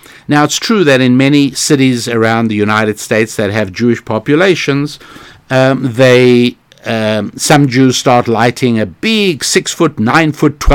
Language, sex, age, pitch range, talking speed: English, male, 60-79, 115-145 Hz, 145 wpm